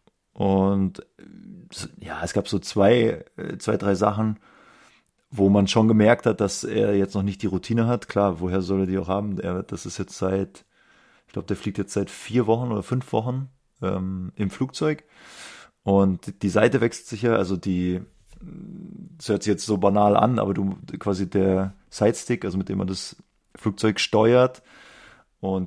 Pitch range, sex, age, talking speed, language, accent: 95-110 Hz, male, 30-49, 175 wpm, German, German